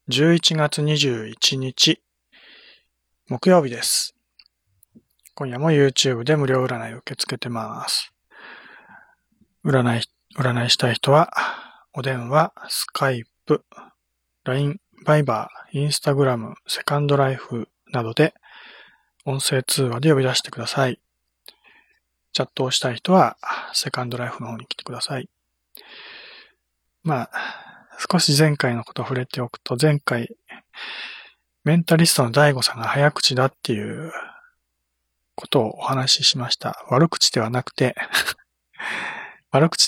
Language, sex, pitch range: Japanese, male, 120-155 Hz